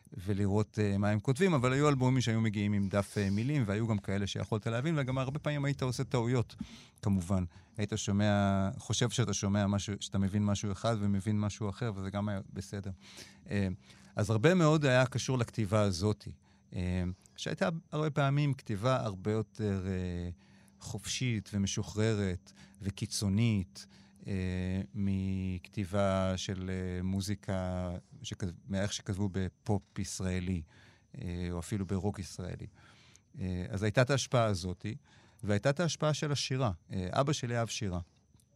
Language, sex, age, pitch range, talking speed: Hebrew, male, 30-49, 95-120 Hz, 145 wpm